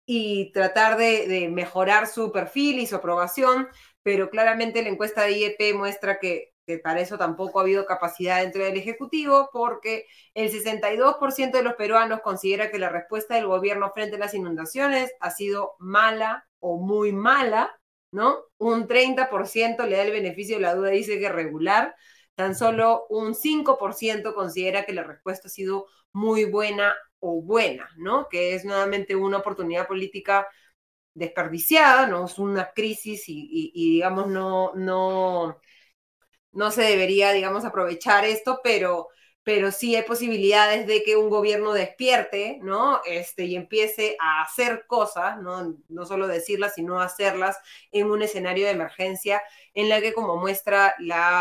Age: 20-39